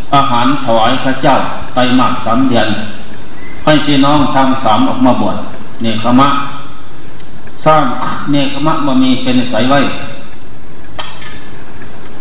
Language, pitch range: Thai, 125-145 Hz